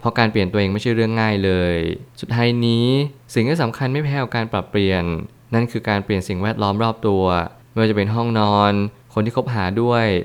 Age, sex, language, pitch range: 20-39, male, Thai, 100-120 Hz